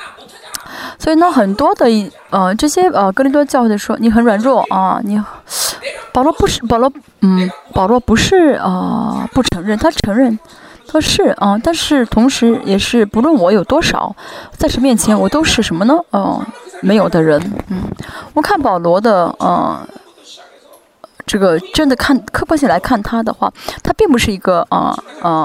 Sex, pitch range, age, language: female, 200-275 Hz, 20-39, Chinese